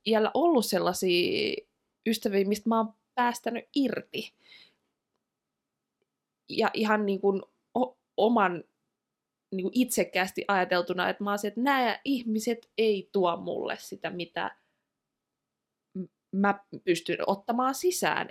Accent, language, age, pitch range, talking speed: native, Finnish, 20-39, 185-225 Hz, 100 wpm